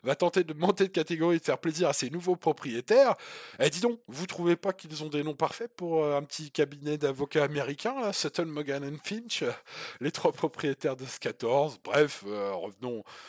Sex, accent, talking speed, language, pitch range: male, French, 200 wpm, French, 140-195 Hz